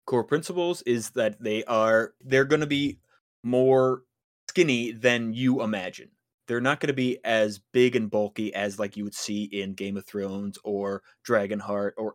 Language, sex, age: English, male, 20-39